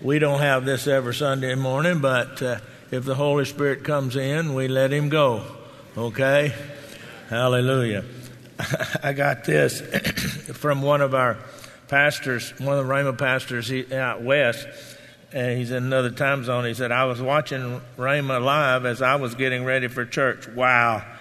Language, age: English, 50-69